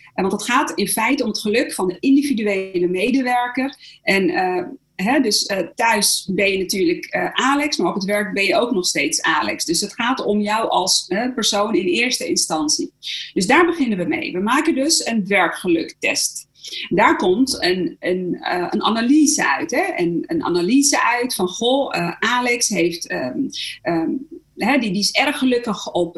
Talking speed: 185 wpm